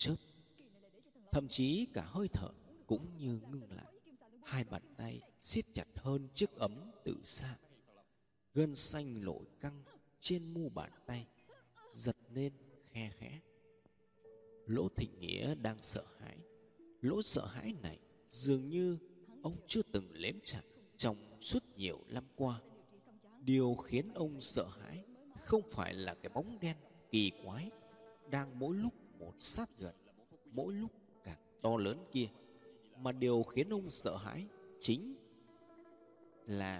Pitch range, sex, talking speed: 110-175 Hz, male, 135 wpm